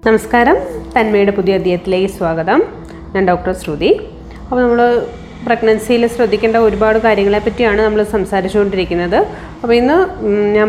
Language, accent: Malayalam, native